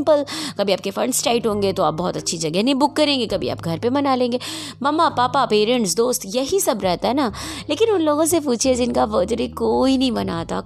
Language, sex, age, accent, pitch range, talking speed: Hindi, female, 20-39, native, 195-260 Hz, 220 wpm